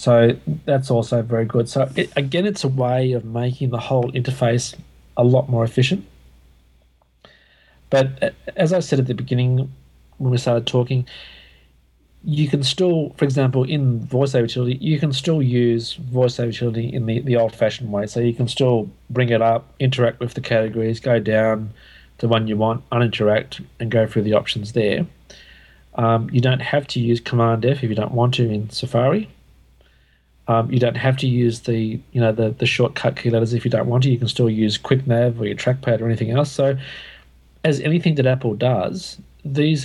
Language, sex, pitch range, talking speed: English, male, 110-130 Hz, 190 wpm